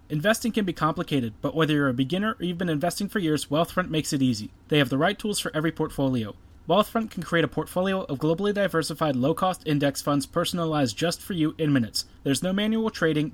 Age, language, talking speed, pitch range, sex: 30-49, English, 215 wpm, 140-175 Hz, male